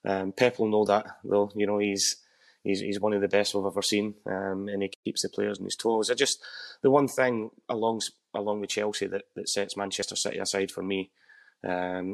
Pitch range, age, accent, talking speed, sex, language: 95-105 Hz, 30-49, British, 220 wpm, male, English